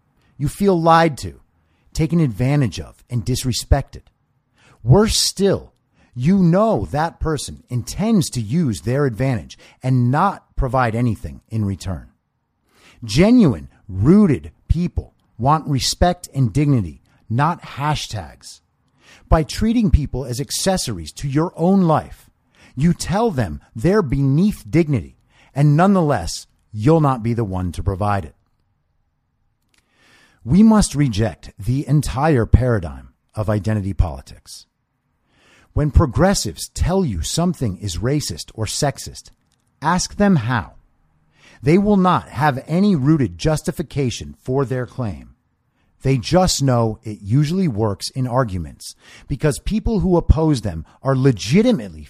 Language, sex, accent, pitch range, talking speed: English, male, American, 100-160 Hz, 120 wpm